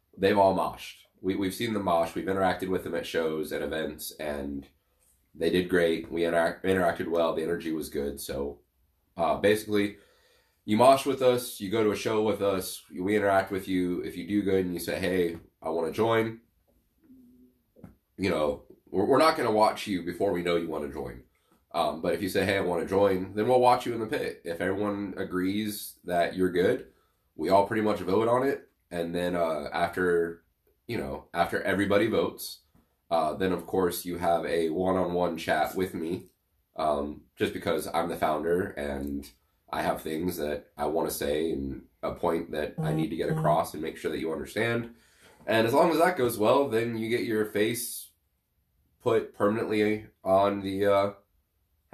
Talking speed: 200 wpm